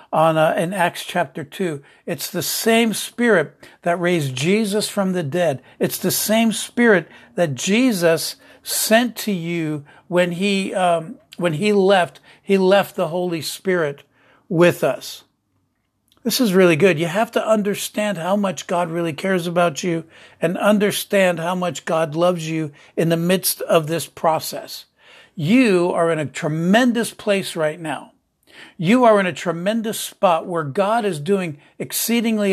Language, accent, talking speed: English, American, 155 wpm